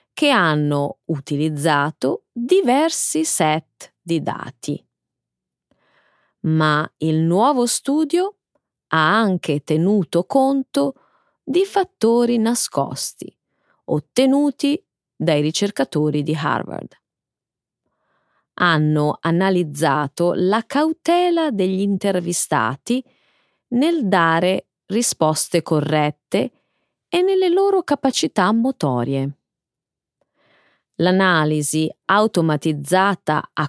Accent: native